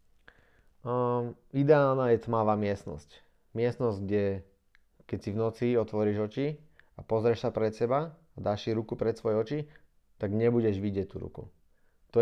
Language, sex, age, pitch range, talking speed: Slovak, male, 20-39, 100-120 Hz, 145 wpm